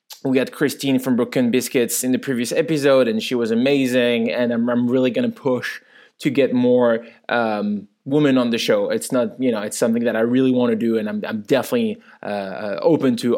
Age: 20-39